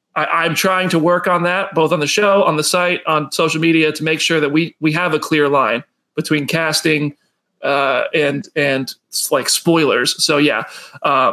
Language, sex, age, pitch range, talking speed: English, male, 30-49, 145-180 Hz, 185 wpm